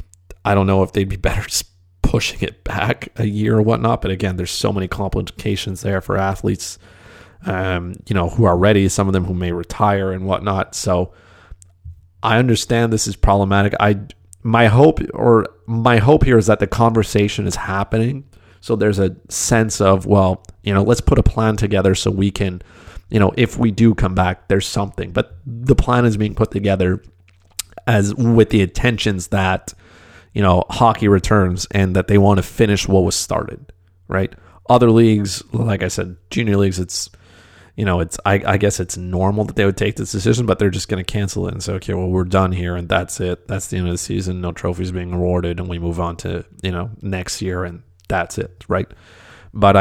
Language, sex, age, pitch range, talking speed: English, male, 30-49, 90-105 Hz, 205 wpm